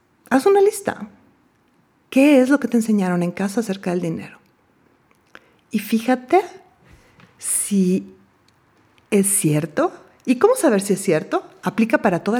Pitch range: 195-275 Hz